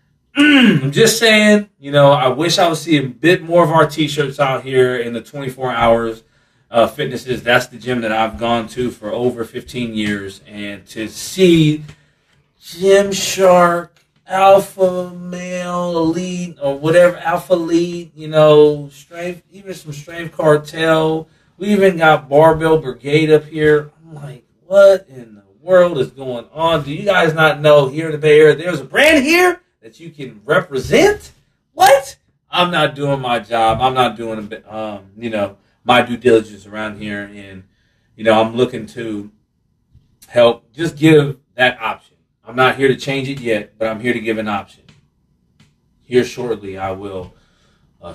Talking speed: 170 wpm